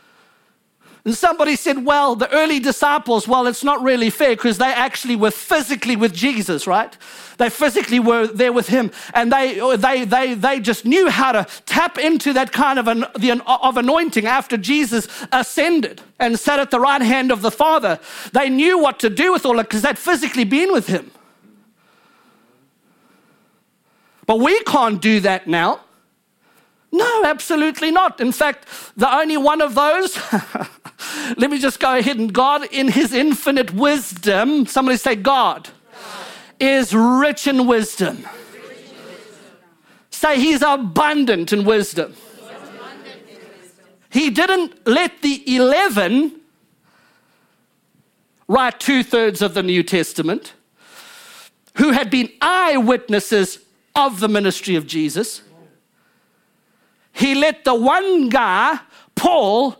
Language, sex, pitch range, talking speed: English, male, 230-295 Hz, 140 wpm